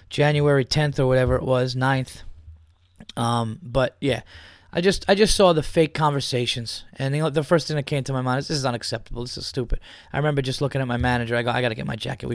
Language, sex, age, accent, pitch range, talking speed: English, male, 20-39, American, 95-150 Hz, 240 wpm